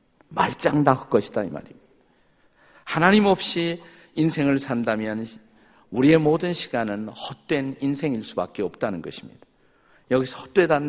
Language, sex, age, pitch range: Korean, male, 50-69, 125-170 Hz